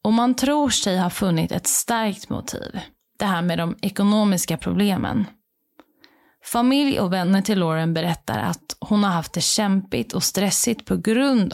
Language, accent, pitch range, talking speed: Swedish, native, 180-235 Hz, 160 wpm